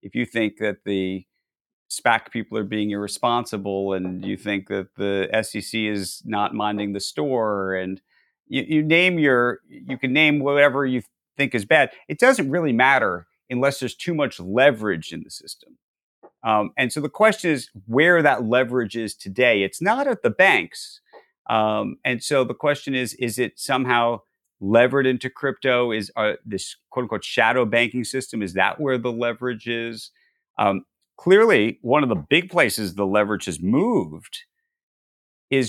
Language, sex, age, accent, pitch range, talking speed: English, male, 40-59, American, 105-140 Hz, 165 wpm